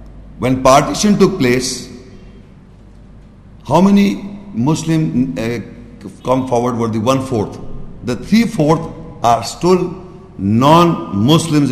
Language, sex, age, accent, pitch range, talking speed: English, male, 60-79, Indian, 120-160 Hz, 85 wpm